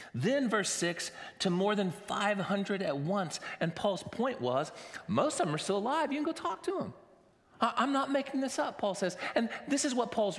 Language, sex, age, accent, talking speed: English, male, 40-59, American, 215 wpm